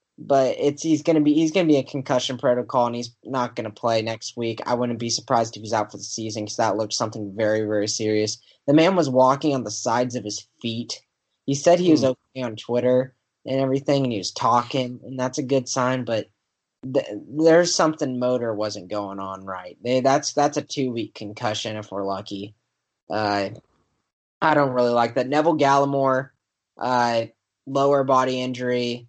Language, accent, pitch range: English, American, 110-135 Hz